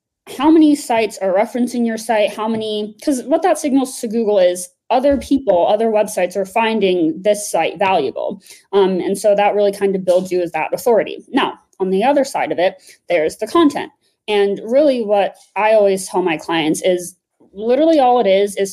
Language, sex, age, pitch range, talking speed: English, female, 20-39, 190-255 Hz, 195 wpm